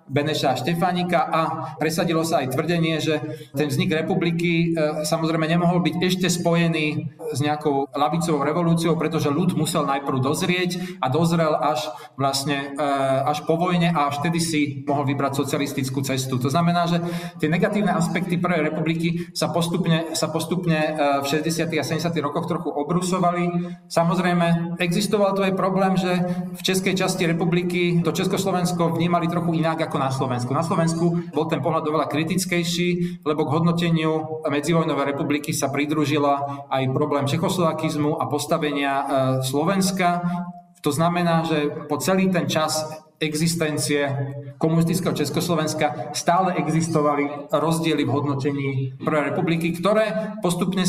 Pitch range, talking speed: 145-175 Hz, 135 wpm